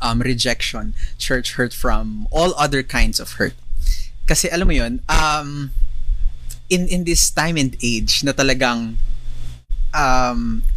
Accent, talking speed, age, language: native, 135 wpm, 20-39, Filipino